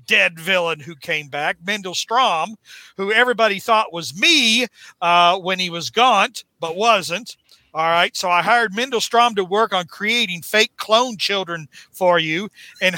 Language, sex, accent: English, male, American